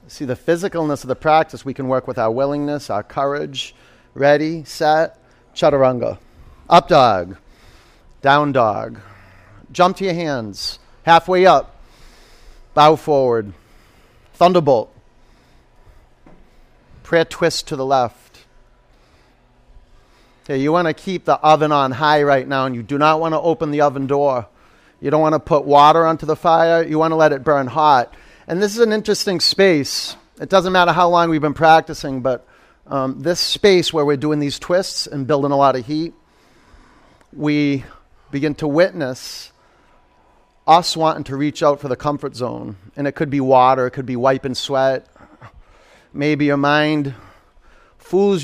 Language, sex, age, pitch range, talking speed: English, male, 40-59, 135-160 Hz, 155 wpm